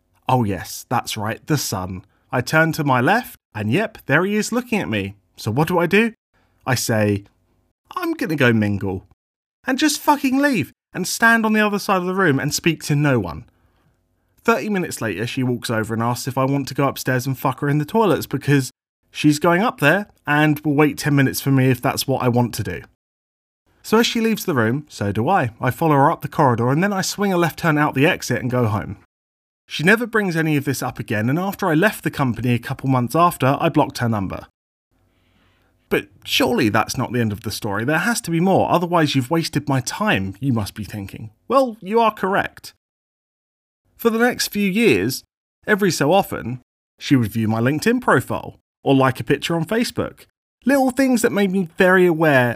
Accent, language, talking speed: British, English, 220 wpm